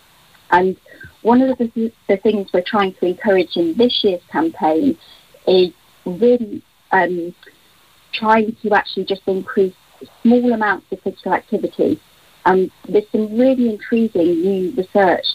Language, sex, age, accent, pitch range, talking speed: English, female, 30-49, British, 180-225 Hz, 135 wpm